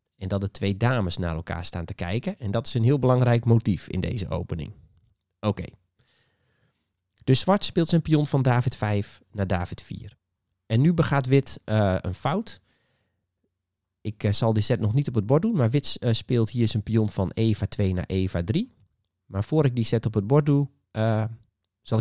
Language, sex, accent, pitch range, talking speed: Dutch, male, Dutch, 100-135 Hz, 205 wpm